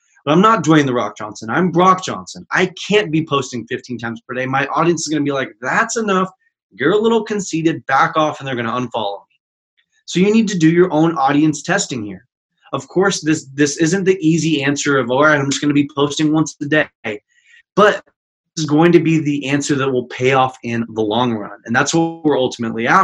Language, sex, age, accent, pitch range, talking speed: English, male, 20-39, American, 130-165 Hz, 235 wpm